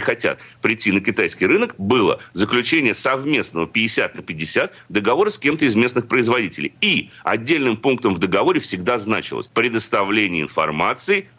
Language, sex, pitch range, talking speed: Russian, male, 125-205 Hz, 135 wpm